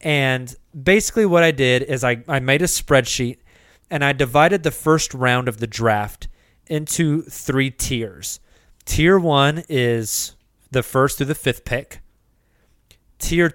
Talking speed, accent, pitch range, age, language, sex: 145 wpm, American, 115-145 Hz, 30-49, English, male